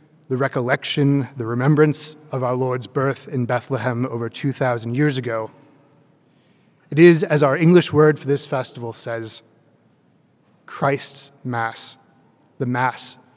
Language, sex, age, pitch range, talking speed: English, male, 20-39, 130-150 Hz, 125 wpm